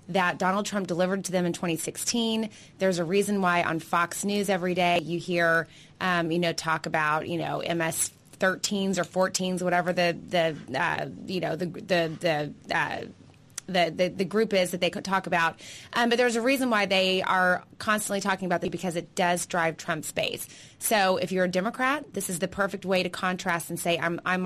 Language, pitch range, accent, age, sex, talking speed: English, 170-195 Hz, American, 20-39, female, 205 wpm